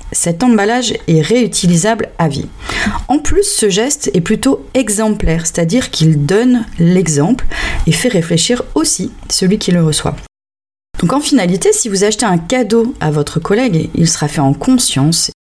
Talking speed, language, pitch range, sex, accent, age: 160 wpm, French, 155-235 Hz, female, French, 30-49